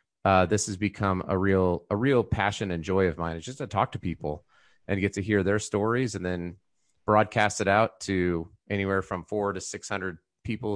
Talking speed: 210 wpm